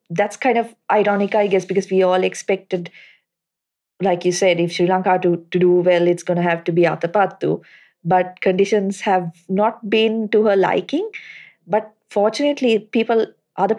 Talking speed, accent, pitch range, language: 175 wpm, Indian, 180-205 Hz, English